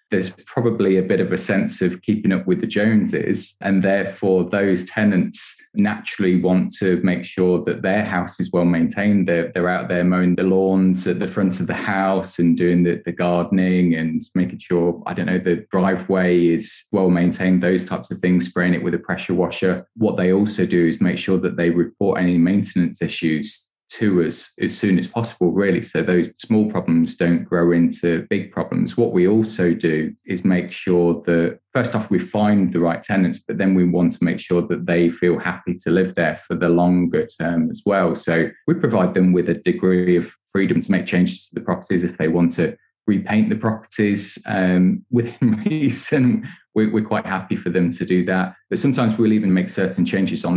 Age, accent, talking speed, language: 20-39, British, 205 wpm, English